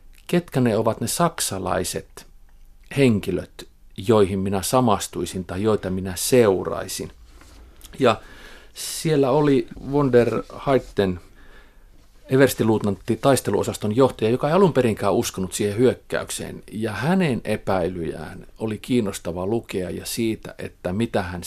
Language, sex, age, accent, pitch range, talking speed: Finnish, male, 50-69, native, 95-130 Hz, 105 wpm